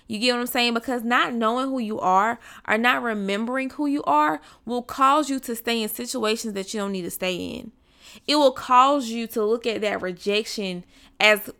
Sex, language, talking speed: female, English, 210 wpm